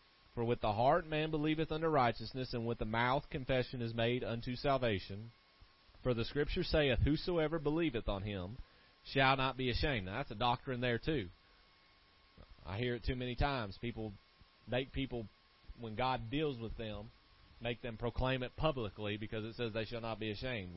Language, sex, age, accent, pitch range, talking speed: English, male, 30-49, American, 110-140 Hz, 180 wpm